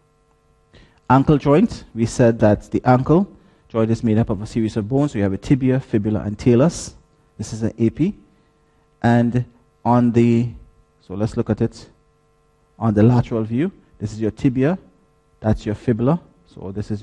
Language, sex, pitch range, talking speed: English, male, 100-120 Hz, 175 wpm